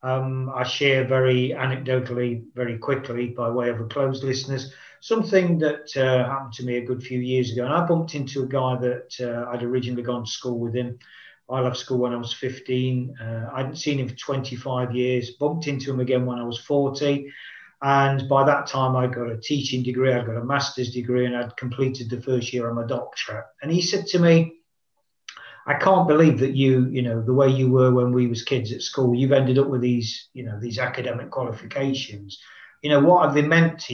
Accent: British